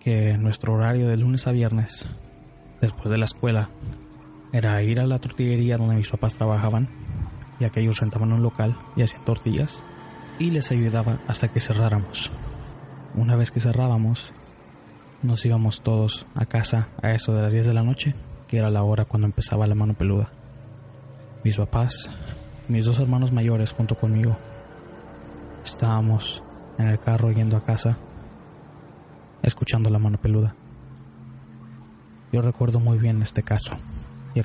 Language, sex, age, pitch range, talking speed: Spanish, male, 20-39, 110-130 Hz, 150 wpm